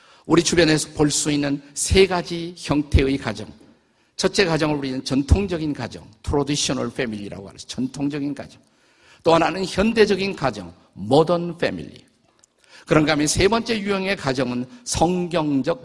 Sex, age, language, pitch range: male, 50-69, Korean, 130-185 Hz